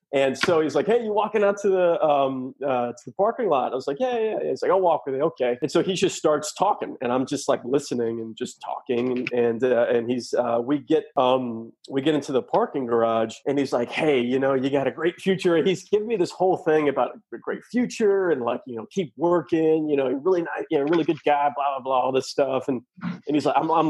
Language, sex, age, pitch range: English, male, 30-49, 130-180 Hz